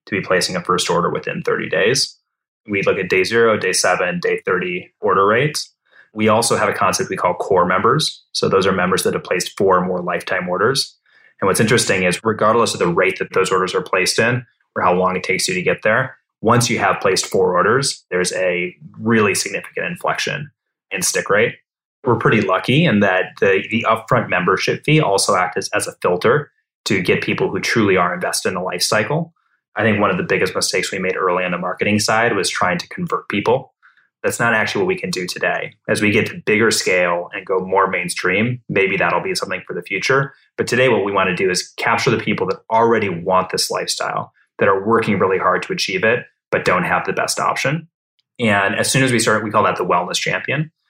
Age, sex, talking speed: 20-39, male, 225 wpm